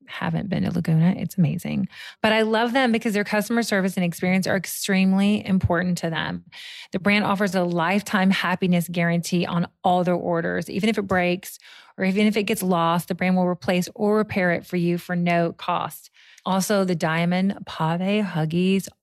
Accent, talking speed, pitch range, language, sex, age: American, 185 wpm, 180-220 Hz, English, female, 30-49